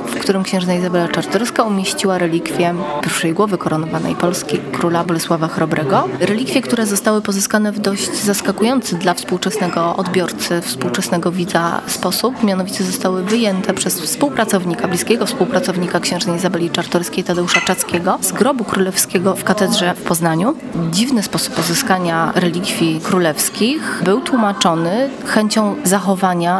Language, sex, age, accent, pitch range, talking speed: Polish, female, 20-39, native, 170-200 Hz, 125 wpm